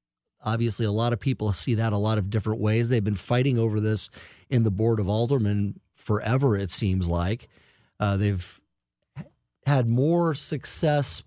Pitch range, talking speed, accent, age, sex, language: 105-130 Hz, 165 wpm, American, 40-59, male, English